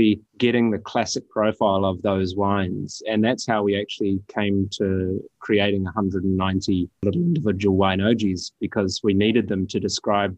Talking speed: 150 wpm